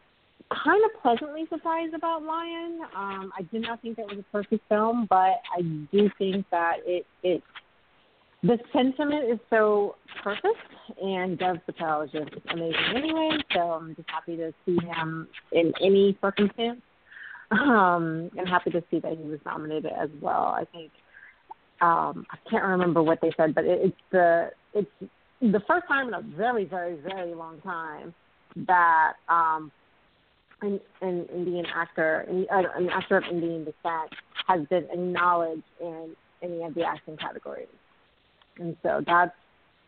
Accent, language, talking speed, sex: American, English, 165 wpm, female